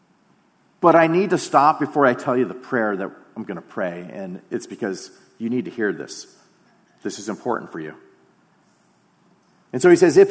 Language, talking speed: English, 200 wpm